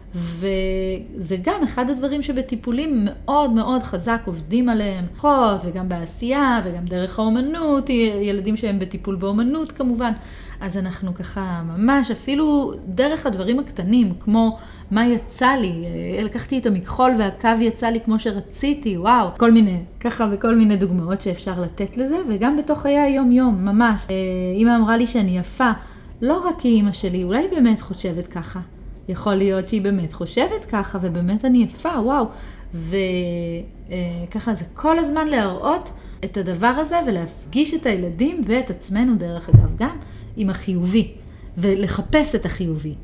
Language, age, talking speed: Hebrew, 30-49, 140 wpm